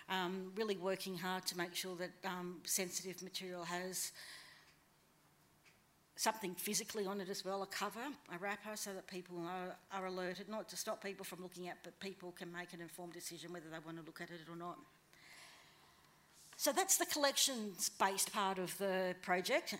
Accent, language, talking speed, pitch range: Australian, English, 180 wpm, 185-215 Hz